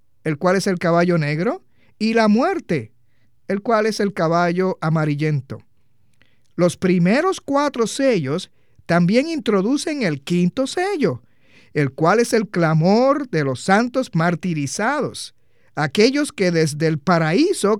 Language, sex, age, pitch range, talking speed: Spanish, male, 50-69, 160-245 Hz, 130 wpm